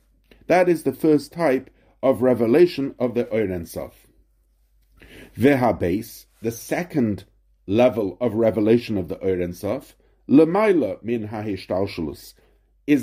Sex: male